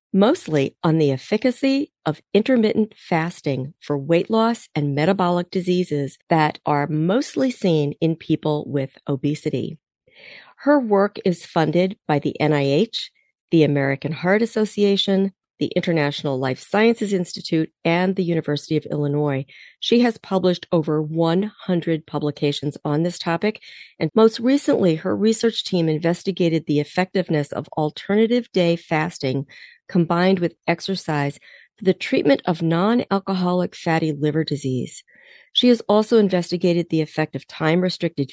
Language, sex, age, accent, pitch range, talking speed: English, female, 40-59, American, 150-195 Hz, 130 wpm